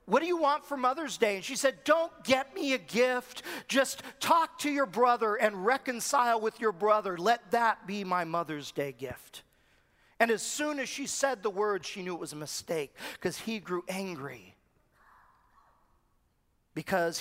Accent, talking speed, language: American, 180 wpm, English